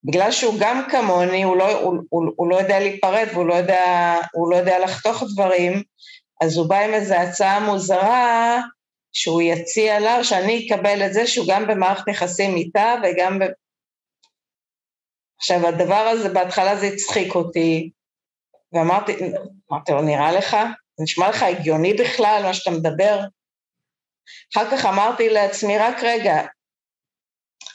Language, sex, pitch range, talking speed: Hebrew, female, 175-215 Hz, 145 wpm